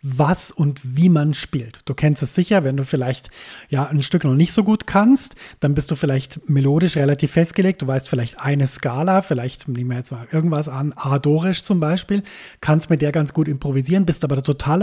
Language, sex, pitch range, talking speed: German, male, 140-175 Hz, 205 wpm